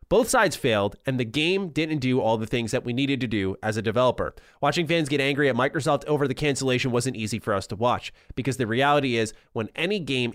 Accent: American